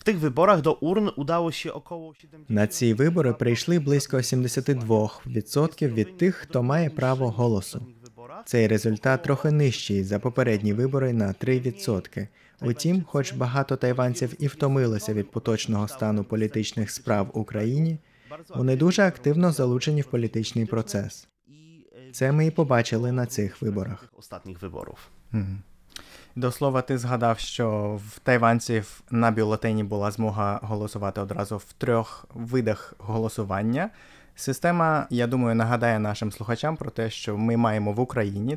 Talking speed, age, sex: 120 wpm, 20-39, male